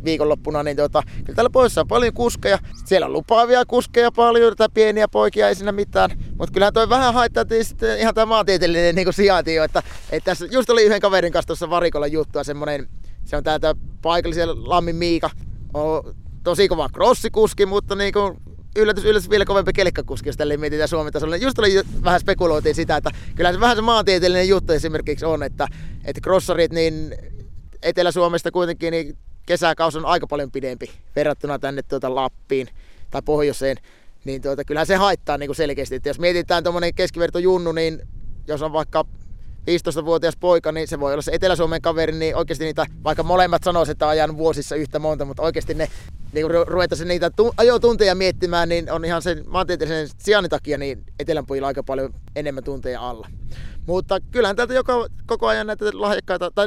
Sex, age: male, 30-49